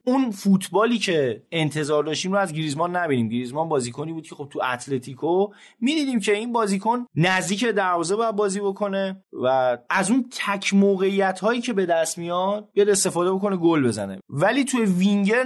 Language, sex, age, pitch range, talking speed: Persian, male, 30-49, 160-215 Hz, 165 wpm